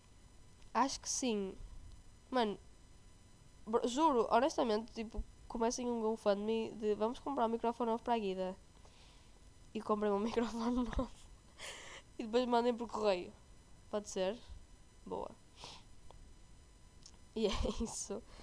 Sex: female